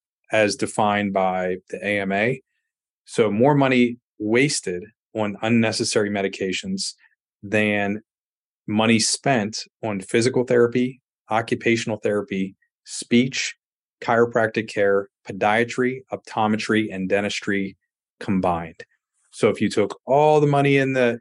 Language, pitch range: English, 100-120 Hz